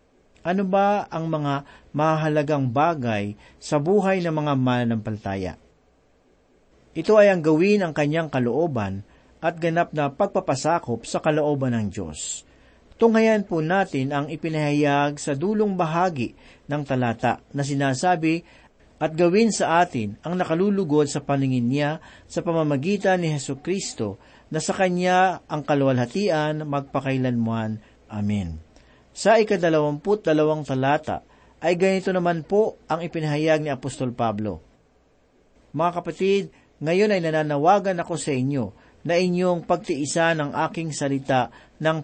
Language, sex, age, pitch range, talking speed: Filipino, male, 50-69, 130-180 Hz, 125 wpm